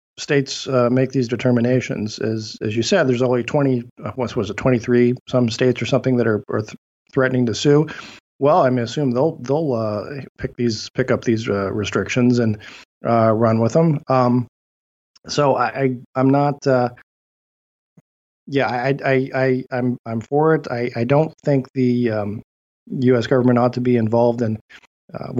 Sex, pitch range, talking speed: male, 115-130 Hz, 180 wpm